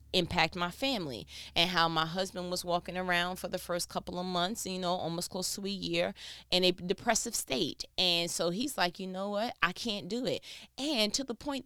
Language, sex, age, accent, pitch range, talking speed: English, female, 20-39, American, 165-225 Hz, 215 wpm